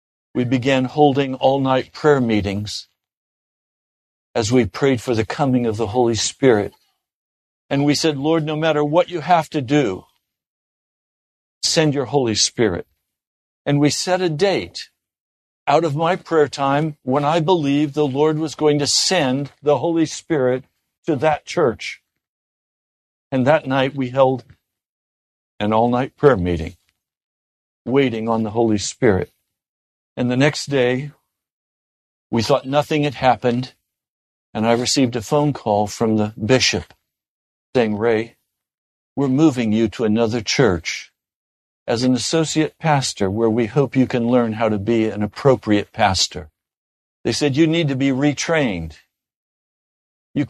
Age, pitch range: 60-79, 110-145 Hz